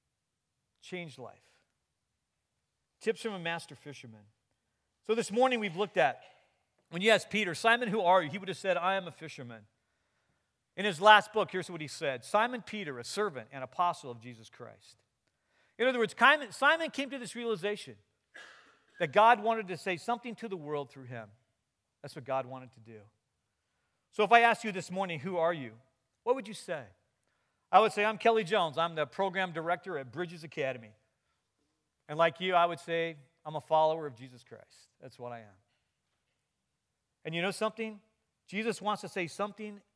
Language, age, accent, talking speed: English, 40-59, American, 185 wpm